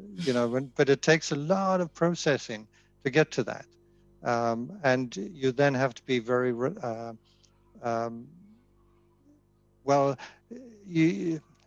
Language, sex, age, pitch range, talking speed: English, male, 60-79, 115-145 Hz, 135 wpm